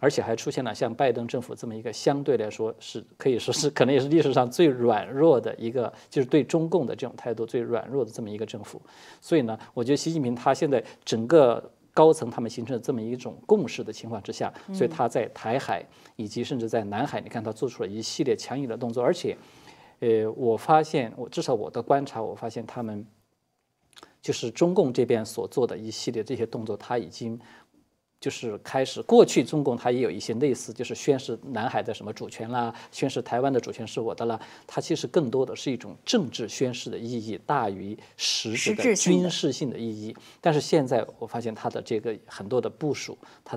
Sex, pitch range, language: male, 115-145 Hz, Chinese